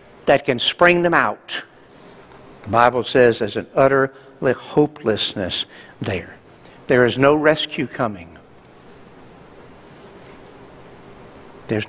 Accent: American